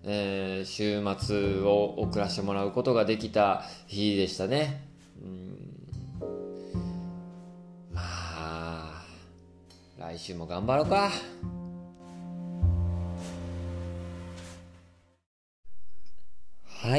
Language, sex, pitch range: Japanese, male, 95-155 Hz